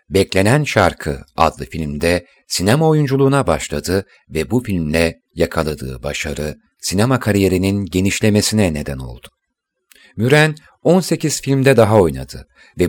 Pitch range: 80-135 Hz